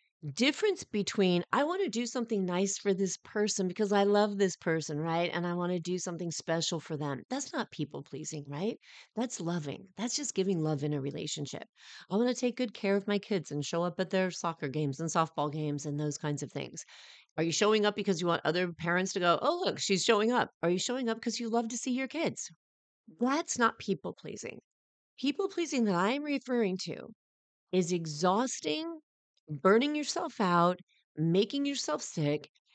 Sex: female